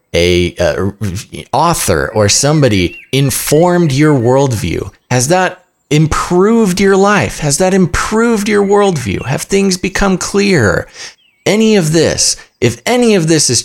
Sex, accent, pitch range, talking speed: male, American, 100-150 Hz, 130 wpm